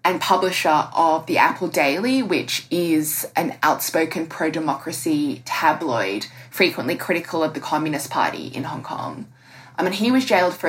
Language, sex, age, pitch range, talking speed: English, female, 20-39, 165-210 Hz, 150 wpm